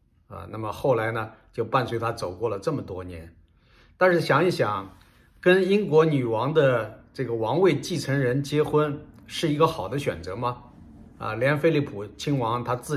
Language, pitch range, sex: Chinese, 110-145 Hz, male